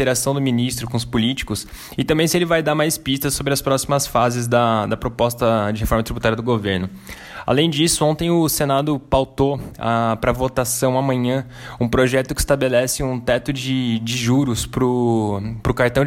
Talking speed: 185 wpm